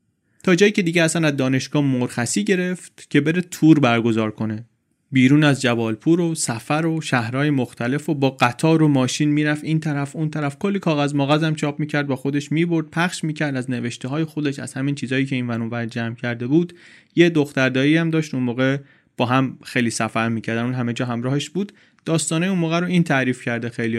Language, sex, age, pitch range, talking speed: Persian, male, 30-49, 120-150 Hz, 200 wpm